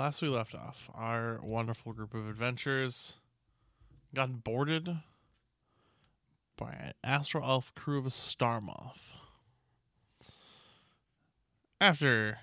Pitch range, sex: 115-145 Hz, male